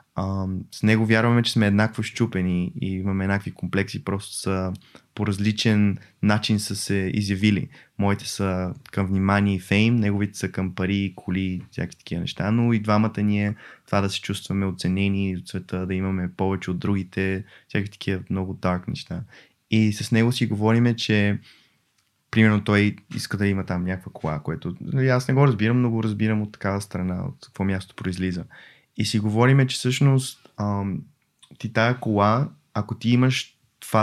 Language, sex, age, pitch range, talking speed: Bulgarian, male, 20-39, 95-110 Hz, 165 wpm